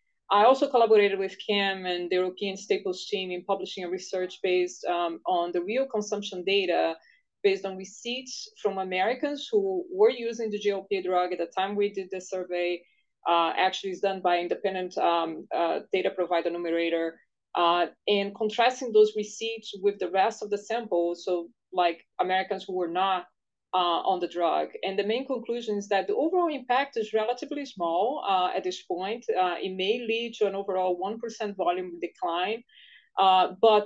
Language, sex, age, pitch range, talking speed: English, female, 20-39, 180-225 Hz, 175 wpm